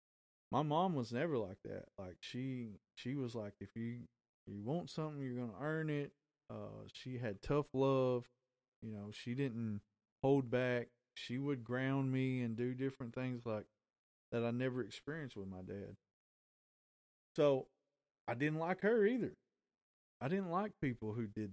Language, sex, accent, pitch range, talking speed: English, male, American, 105-130 Hz, 165 wpm